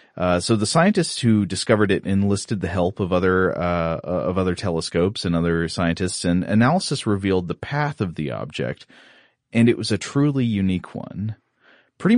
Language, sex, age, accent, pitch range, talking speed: English, male, 30-49, American, 90-115 Hz, 170 wpm